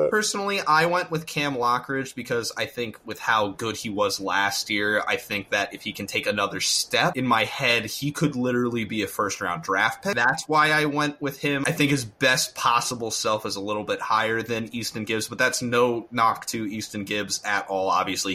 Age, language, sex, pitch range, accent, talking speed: 20-39, English, male, 105-135 Hz, American, 220 wpm